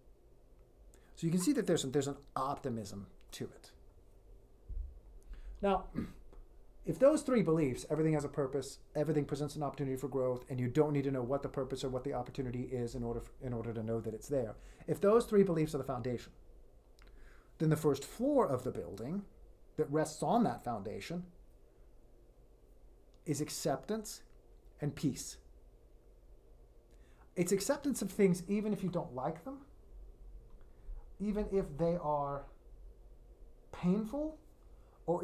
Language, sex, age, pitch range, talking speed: English, male, 40-59, 125-170 Hz, 155 wpm